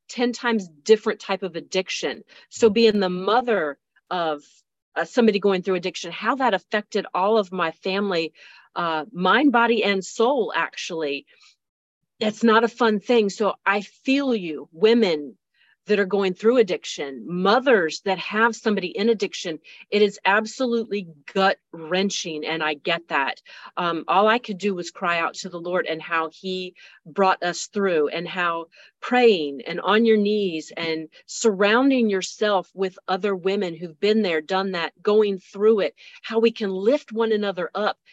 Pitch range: 175-220 Hz